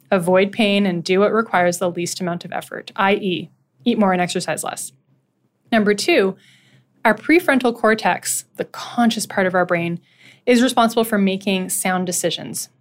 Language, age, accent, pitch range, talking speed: English, 20-39, American, 185-235 Hz, 160 wpm